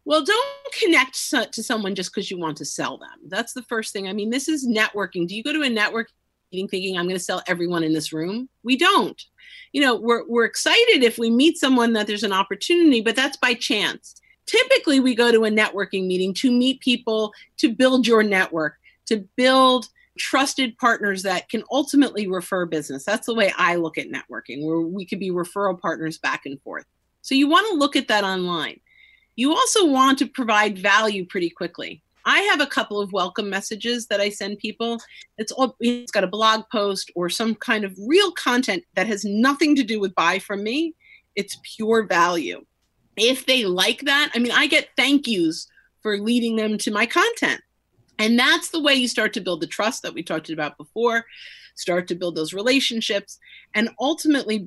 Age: 40-59